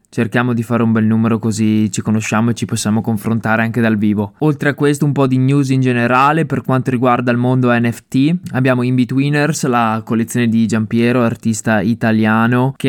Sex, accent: male, native